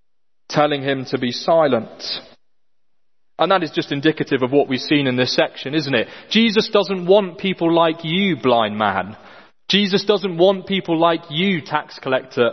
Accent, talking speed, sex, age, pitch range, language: British, 170 wpm, male, 30-49, 125-170 Hz, English